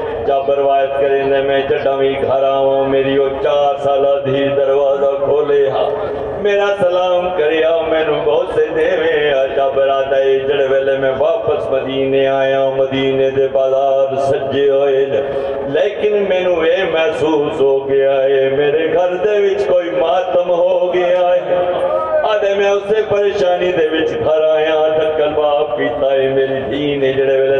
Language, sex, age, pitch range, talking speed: Urdu, male, 50-69, 135-200 Hz, 40 wpm